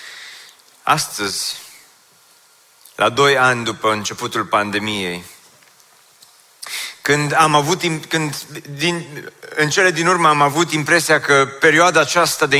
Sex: male